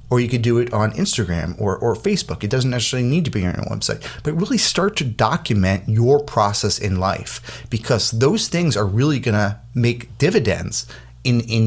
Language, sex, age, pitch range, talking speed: English, male, 30-49, 100-125 Hz, 195 wpm